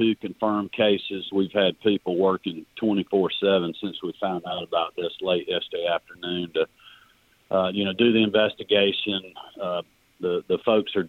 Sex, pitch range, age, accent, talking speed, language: male, 90-105 Hz, 40-59, American, 150 wpm, English